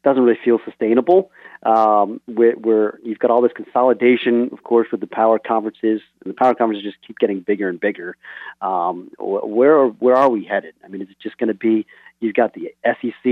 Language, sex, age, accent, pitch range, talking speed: English, male, 40-59, American, 115-140 Hz, 205 wpm